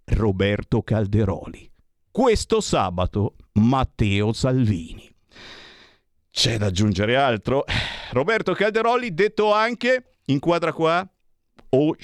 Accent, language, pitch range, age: native, Italian, 105-170 Hz, 50-69